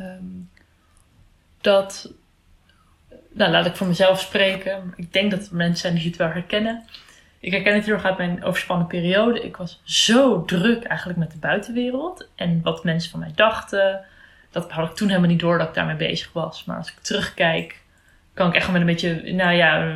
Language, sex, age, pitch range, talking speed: Dutch, female, 20-39, 165-205 Hz, 190 wpm